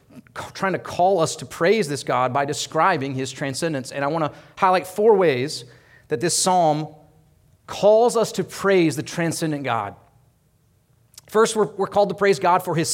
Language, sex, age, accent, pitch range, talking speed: English, male, 30-49, American, 140-195 Hz, 175 wpm